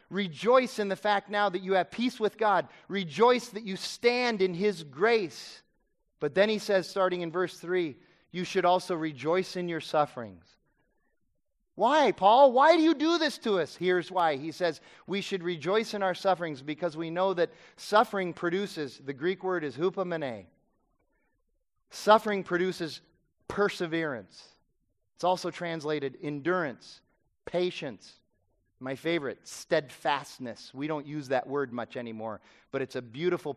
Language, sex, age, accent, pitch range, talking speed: English, male, 30-49, American, 155-210 Hz, 150 wpm